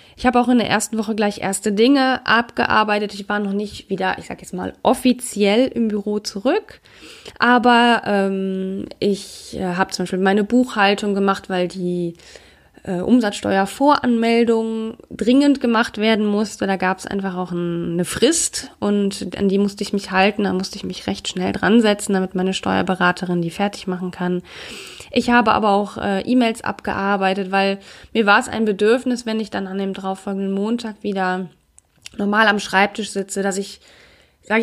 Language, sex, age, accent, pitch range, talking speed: German, female, 20-39, German, 185-220 Hz, 170 wpm